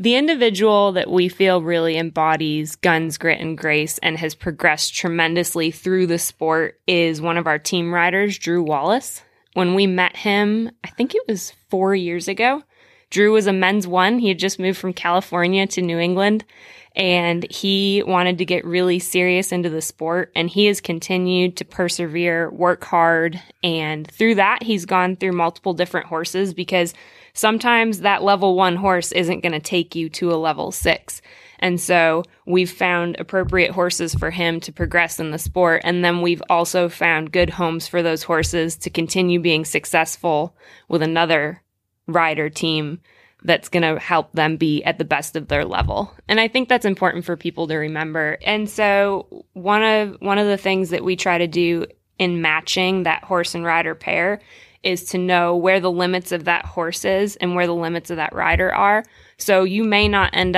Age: 20-39